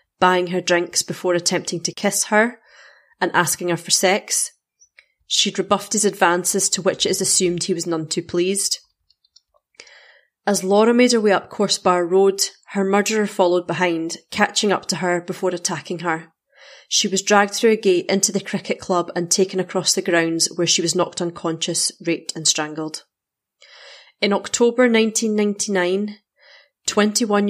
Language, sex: English, female